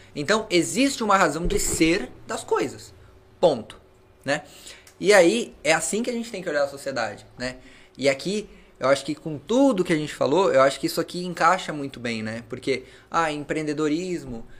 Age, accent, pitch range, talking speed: 20-39, Brazilian, 115-150 Hz, 190 wpm